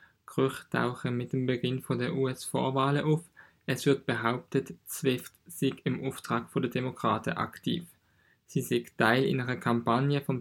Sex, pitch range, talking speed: male, 120-140 Hz, 150 wpm